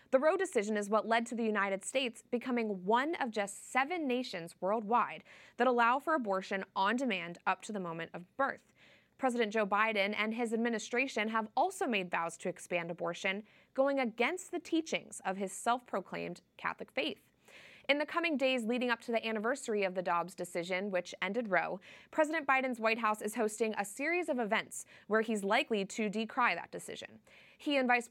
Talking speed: 185 wpm